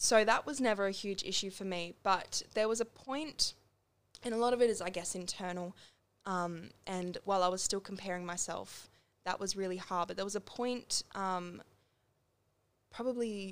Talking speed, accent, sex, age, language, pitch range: 185 wpm, Australian, female, 10-29, English, 175-210 Hz